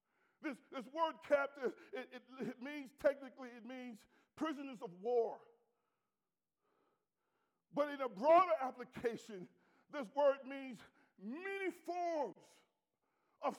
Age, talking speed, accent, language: 50-69, 110 wpm, American, English